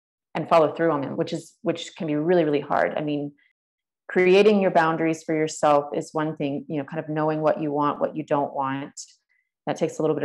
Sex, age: female, 30-49